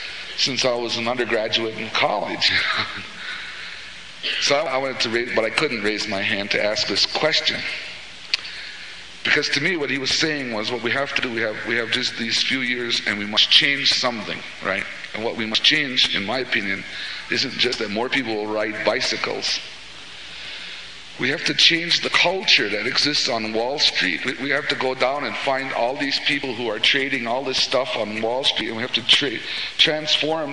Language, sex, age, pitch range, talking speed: English, male, 50-69, 115-155 Hz, 195 wpm